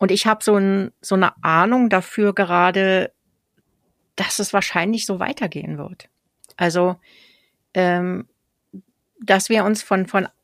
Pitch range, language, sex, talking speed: 170-210 Hz, German, female, 130 wpm